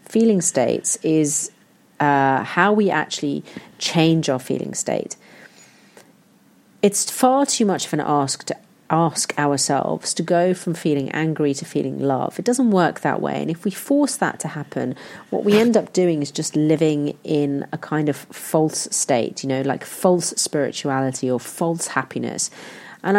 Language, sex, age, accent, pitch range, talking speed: English, female, 40-59, British, 140-180 Hz, 165 wpm